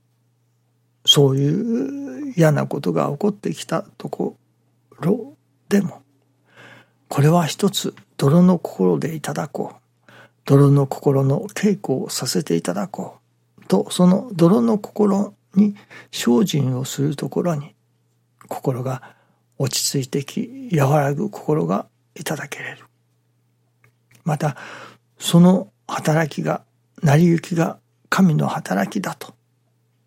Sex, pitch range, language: male, 120-165 Hz, Japanese